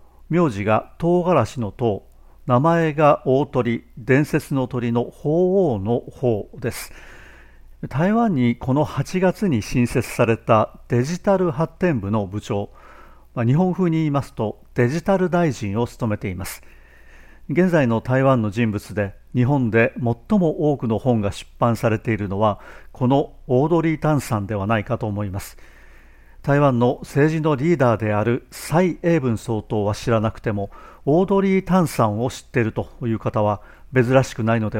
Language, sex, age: Japanese, male, 50-69